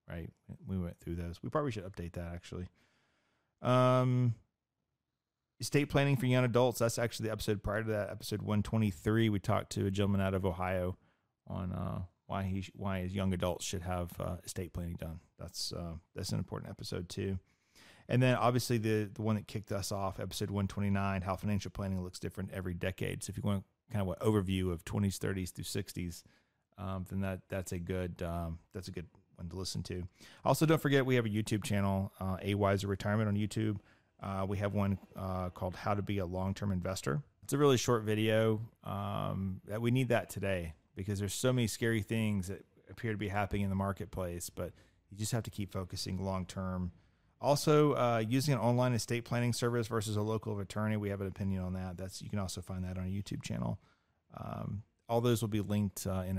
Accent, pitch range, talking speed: American, 95-110 Hz, 215 wpm